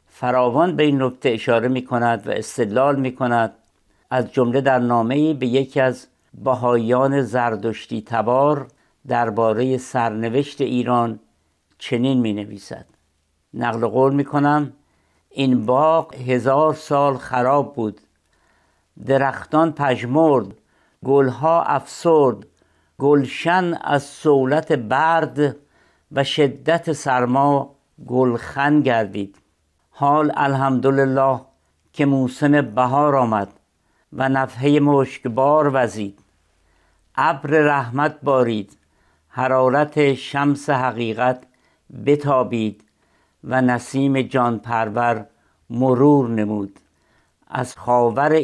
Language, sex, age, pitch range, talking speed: Persian, male, 60-79, 115-140 Hz, 95 wpm